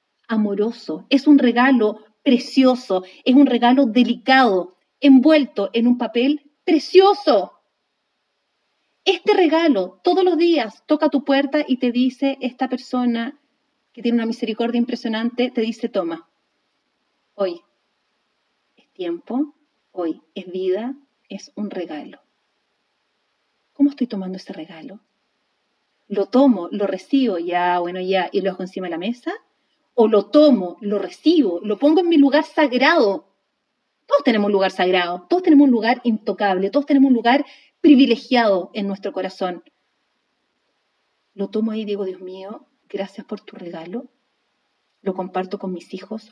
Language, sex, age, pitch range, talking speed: Spanish, female, 30-49, 190-270 Hz, 140 wpm